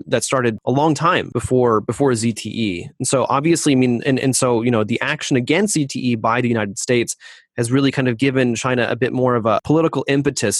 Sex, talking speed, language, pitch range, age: male, 220 wpm, English, 115-140 Hz, 30-49